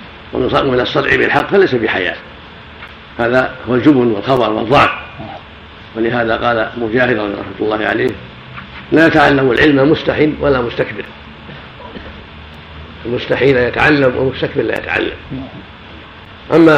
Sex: male